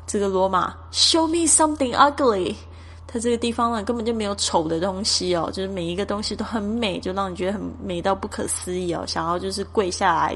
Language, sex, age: Chinese, female, 10-29